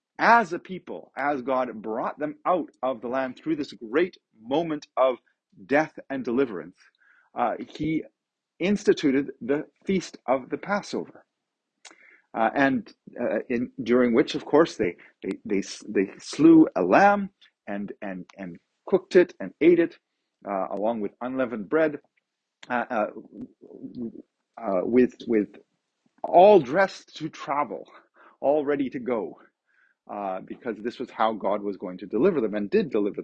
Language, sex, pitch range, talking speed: English, male, 130-195 Hz, 150 wpm